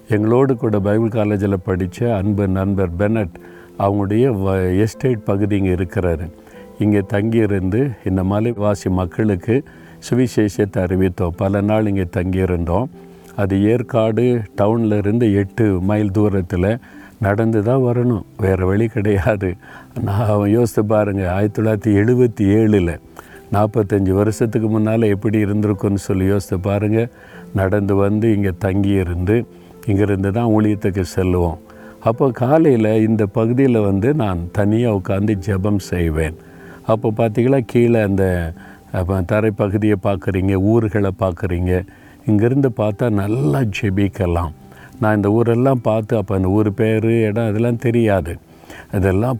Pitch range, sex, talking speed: 95-110 Hz, male, 110 wpm